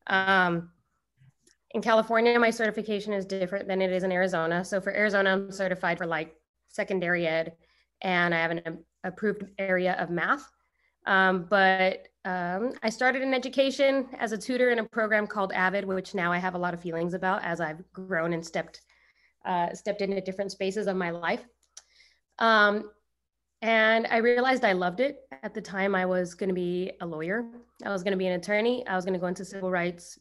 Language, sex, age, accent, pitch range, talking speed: English, female, 20-39, American, 180-215 Hz, 195 wpm